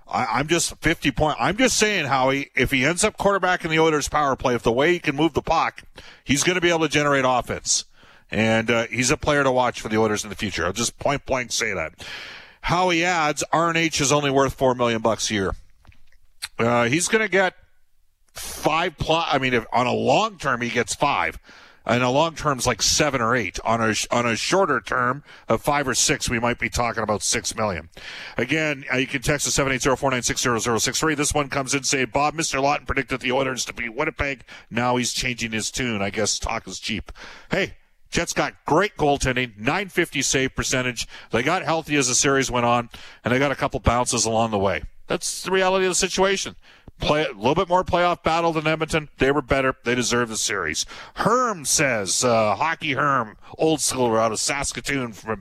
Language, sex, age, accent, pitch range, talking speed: English, male, 50-69, American, 120-155 Hz, 210 wpm